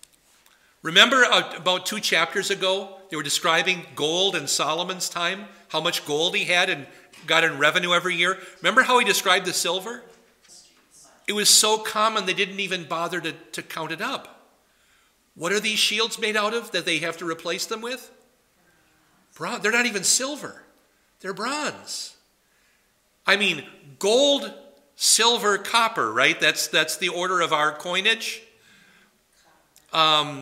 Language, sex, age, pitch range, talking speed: English, male, 50-69, 155-215 Hz, 150 wpm